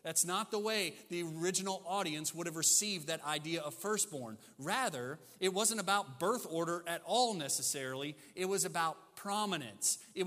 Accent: American